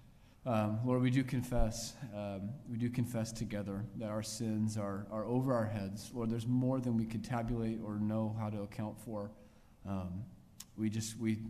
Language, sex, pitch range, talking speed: English, male, 105-120 Hz, 185 wpm